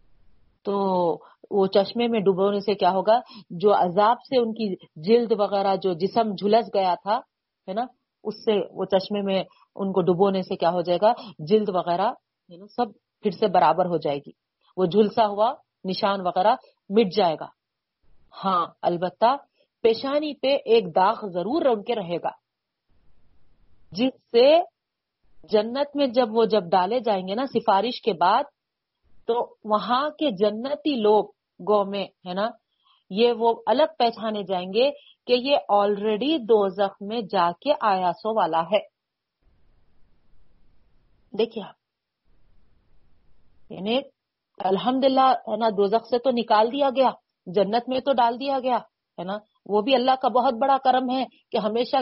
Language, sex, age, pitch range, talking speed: Urdu, female, 40-59, 195-250 Hz, 145 wpm